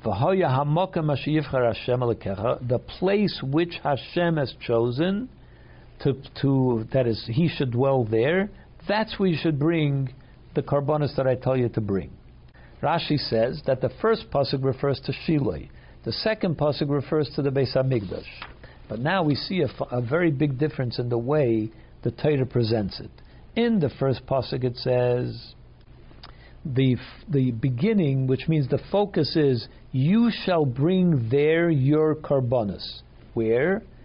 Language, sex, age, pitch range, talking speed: English, male, 60-79, 120-155 Hz, 140 wpm